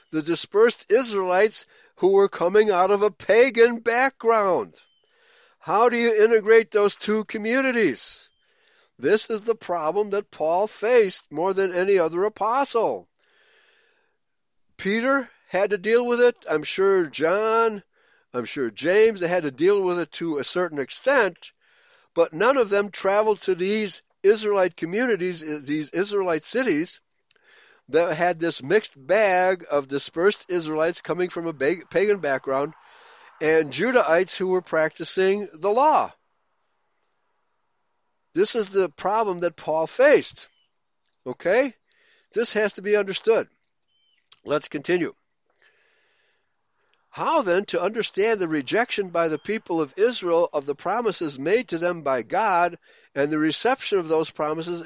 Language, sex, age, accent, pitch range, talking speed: English, male, 60-79, American, 170-245 Hz, 135 wpm